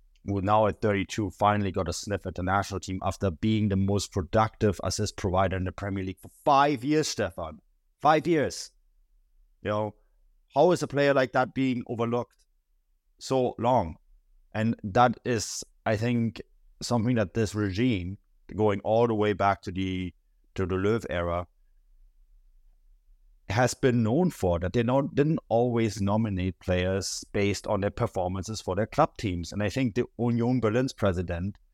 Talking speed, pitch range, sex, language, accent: 165 wpm, 95-115 Hz, male, English, German